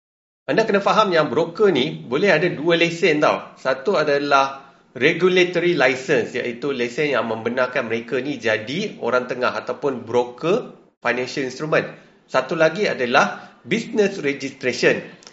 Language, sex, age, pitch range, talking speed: Malay, male, 30-49, 140-190 Hz, 130 wpm